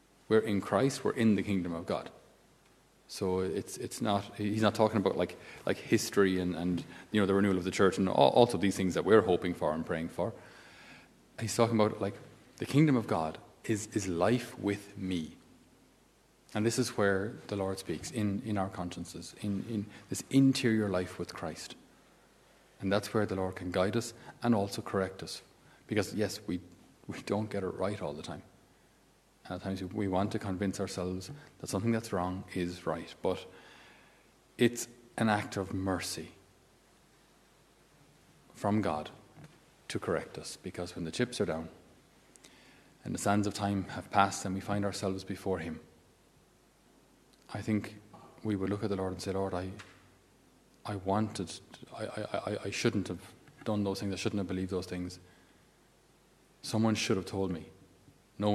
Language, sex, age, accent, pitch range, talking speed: English, male, 30-49, Irish, 95-105 Hz, 175 wpm